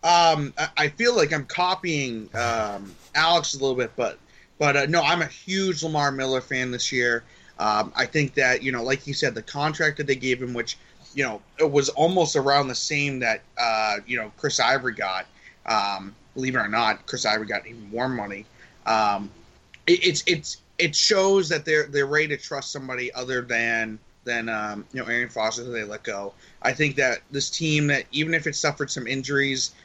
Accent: American